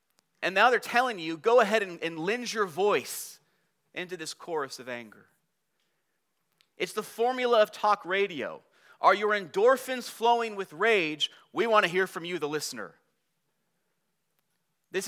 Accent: American